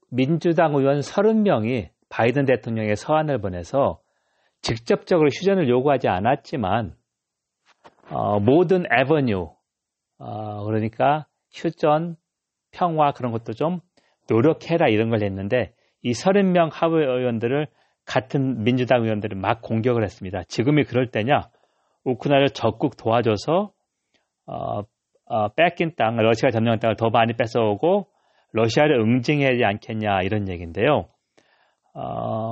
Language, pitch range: Korean, 110-150 Hz